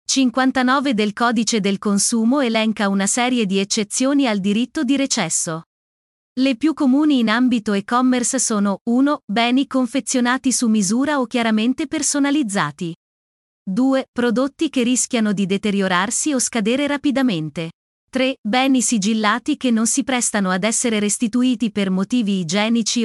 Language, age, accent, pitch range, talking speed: Italian, 30-49, native, 205-260 Hz, 135 wpm